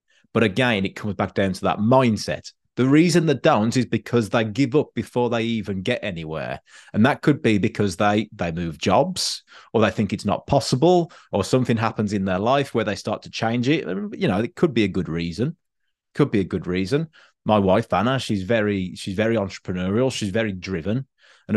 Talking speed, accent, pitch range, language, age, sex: 210 wpm, British, 100-130 Hz, English, 30-49, male